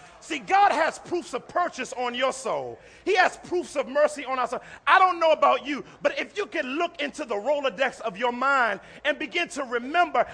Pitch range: 245-295 Hz